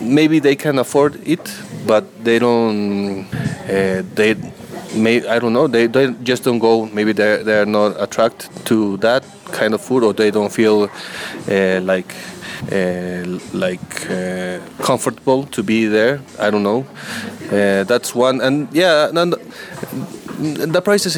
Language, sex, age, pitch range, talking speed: English, male, 20-39, 105-135 Hz, 155 wpm